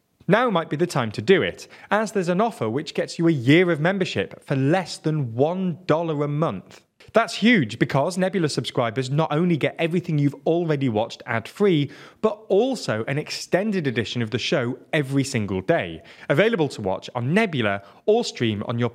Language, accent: English, British